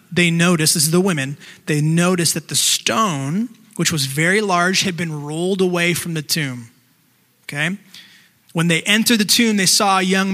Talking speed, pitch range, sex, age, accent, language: 185 wpm, 150-185 Hz, male, 20-39, American, English